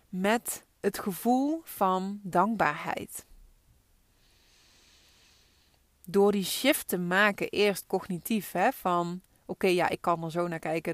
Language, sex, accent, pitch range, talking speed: Dutch, female, Dutch, 175-220 Hz, 125 wpm